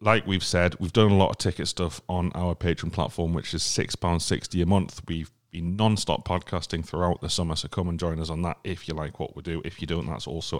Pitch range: 80-100 Hz